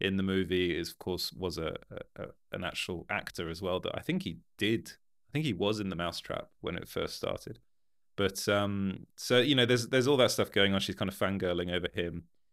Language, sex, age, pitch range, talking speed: English, male, 30-49, 95-115 Hz, 225 wpm